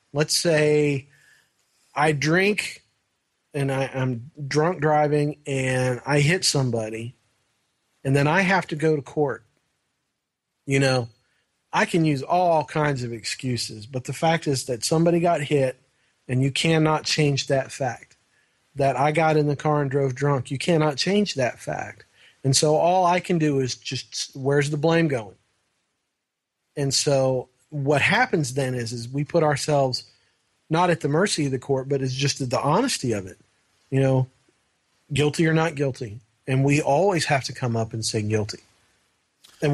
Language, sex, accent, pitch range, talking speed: English, male, American, 130-155 Hz, 170 wpm